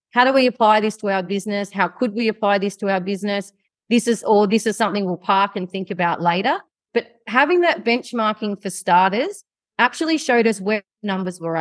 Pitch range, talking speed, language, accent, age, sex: 190-240 Hz, 205 wpm, English, Australian, 30-49, female